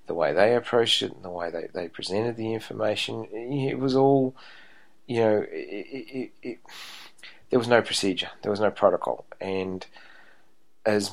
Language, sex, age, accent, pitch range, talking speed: English, male, 30-49, Australian, 95-115 Hz, 175 wpm